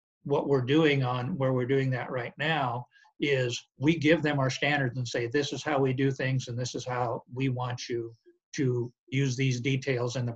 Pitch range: 125-145 Hz